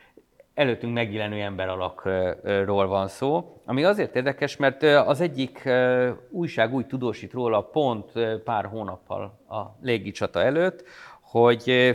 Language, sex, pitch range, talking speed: Hungarian, male, 100-125 Hz, 115 wpm